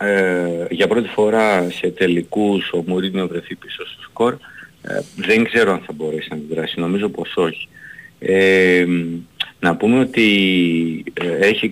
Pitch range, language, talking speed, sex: 90-115 Hz, Greek, 130 wpm, male